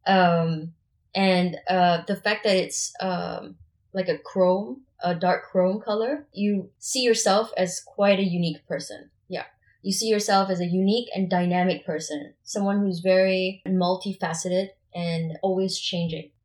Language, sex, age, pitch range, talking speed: English, female, 20-39, 175-195 Hz, 145 wpm